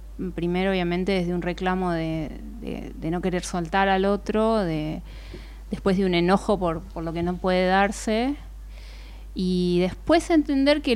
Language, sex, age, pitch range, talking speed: Spanish, female, 30-49, 180-235 Hz, 150 wpm